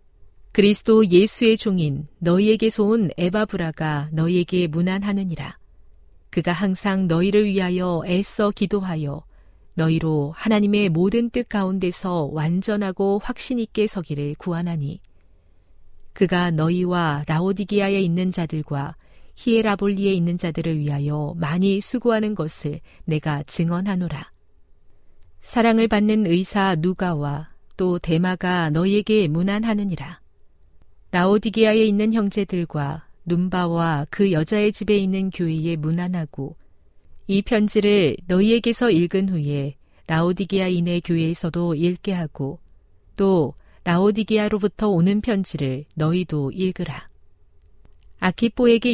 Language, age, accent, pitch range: Korean, 40-59, native, 150-200 Hz